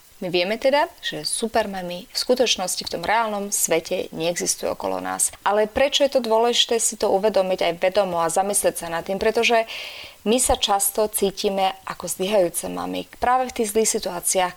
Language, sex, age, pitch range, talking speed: Slovak, female, 30-49, 170-215 Hz, 175 wpm